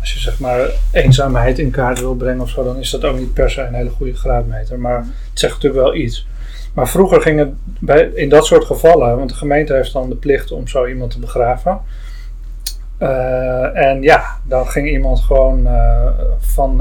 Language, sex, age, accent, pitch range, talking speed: Dutch, male, 30-49, Dutch, 120-135 Hz, 205 wpm